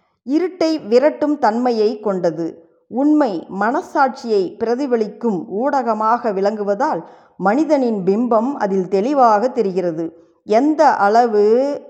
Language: Tamil